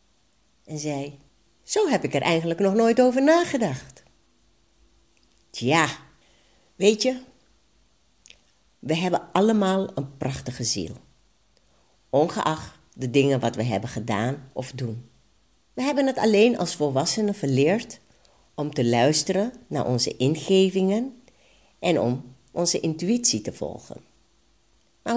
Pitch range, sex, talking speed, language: 135-225 Hz, female, 115 wpm, Dutch